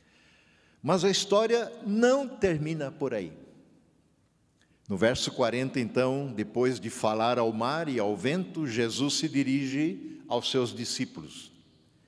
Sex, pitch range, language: male, 130-215 Hz, Portuguese